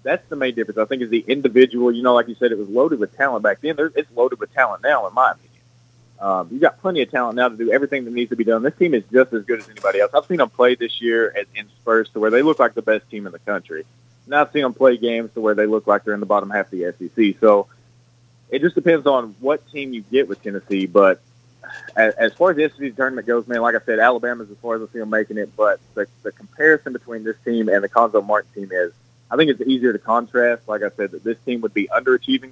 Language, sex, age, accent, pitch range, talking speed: English, male, 30-49, American, 110-125 Hz, 280 wpm